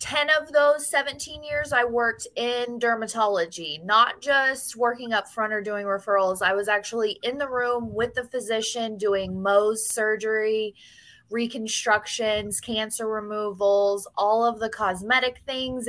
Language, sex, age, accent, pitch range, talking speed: English, female, 20-39, American, 210-270 Hz, 140 wpm